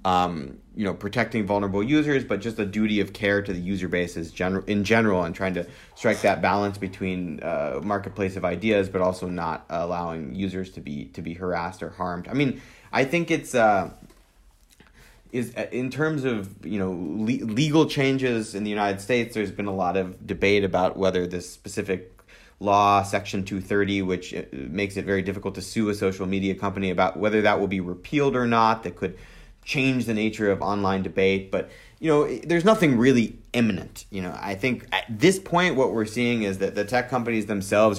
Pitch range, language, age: 95-115 Hz, English, 30-49